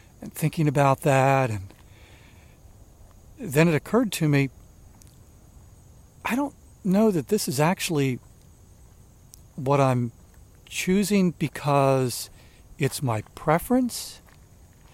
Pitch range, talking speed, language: 115-160 Hz, 95 wpm, English